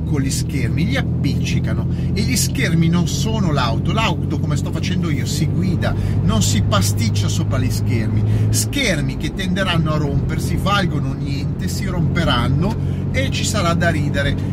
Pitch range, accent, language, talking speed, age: 100-110 Hz, native, Italian, 155 wpm, 40-59